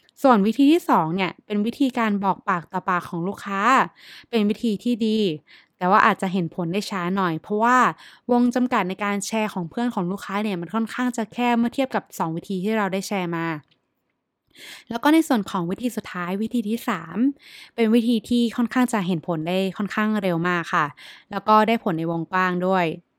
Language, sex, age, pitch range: Thai, female, 20-39, 175-225 Hz